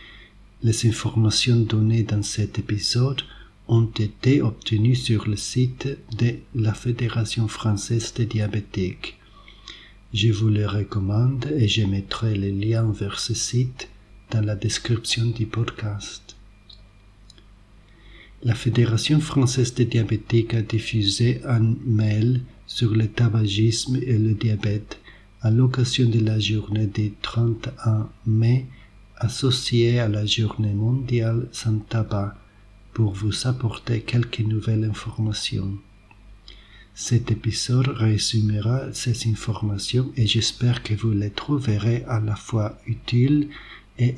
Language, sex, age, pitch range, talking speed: French, male, 50-69, 105-120 Hz, 120 wpm